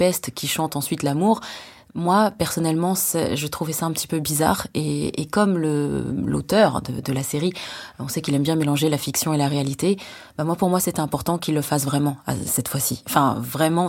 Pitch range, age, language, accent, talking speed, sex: 140-170 Hz, 20-39, French, French, 205 wpm, female